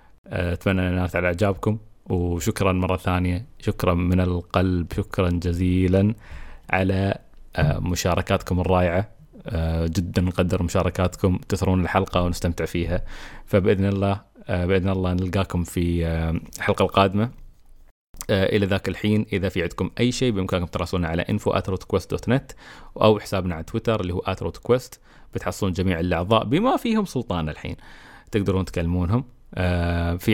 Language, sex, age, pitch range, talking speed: Arabic, male, 20-39, 90-100 Hz, 120 wpm